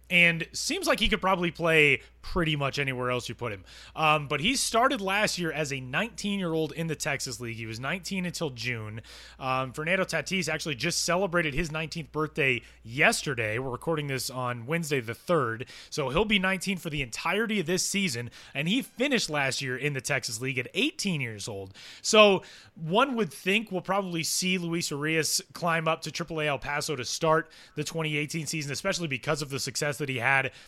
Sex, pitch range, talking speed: male, 140-185 Hz, 195 wpm